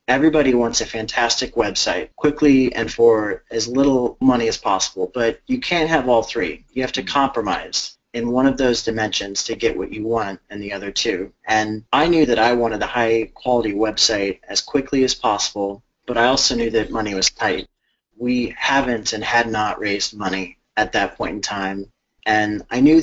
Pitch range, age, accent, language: 110-130 Hz, 30-49, American, English